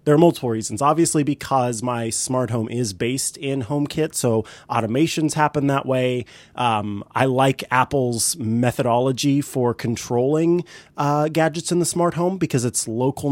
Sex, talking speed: male, 155 wpm